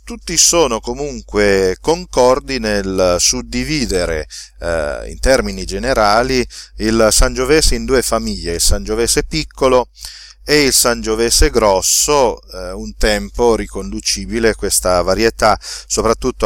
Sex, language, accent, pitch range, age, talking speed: male, Italian, native, 90-120 Hz, 40-59, 105 wpm